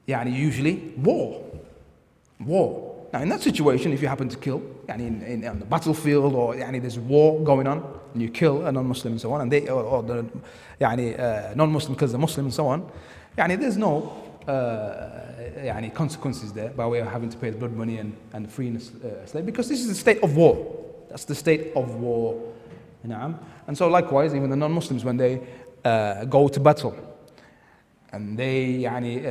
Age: 30-49